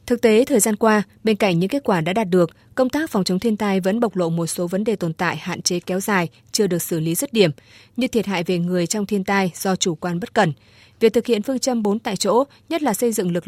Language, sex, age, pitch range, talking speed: Vietnamese, female, 20-39, 175-220 Hz, 285 wpm